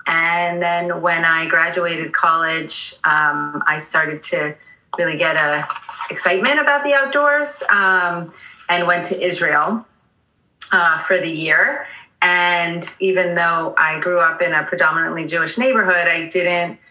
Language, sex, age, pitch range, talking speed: English, female, 30-49, 155-180 Hz, 140 wpm